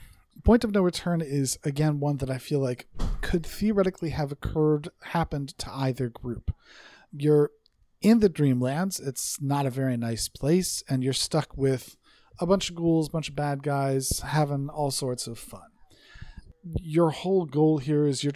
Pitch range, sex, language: 125-160 Hz, male, English